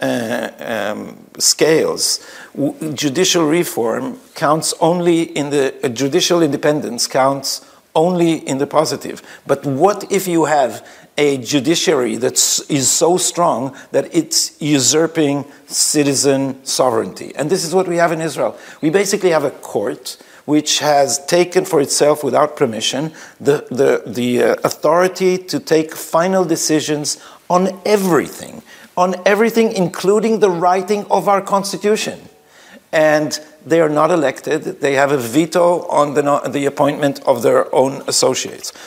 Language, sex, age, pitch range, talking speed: Hebrew, male, 50-69, 145-185 Hz, 140 wpm